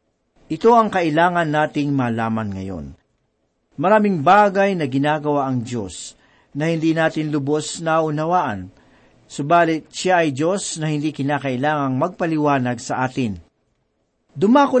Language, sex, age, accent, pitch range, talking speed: Filipino, male, 50-69, native, 130-175 Hz, 120 wpm